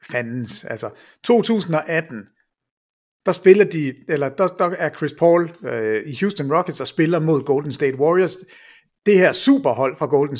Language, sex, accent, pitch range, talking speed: English, male, Danish, 150-205 Hz, 155 wpm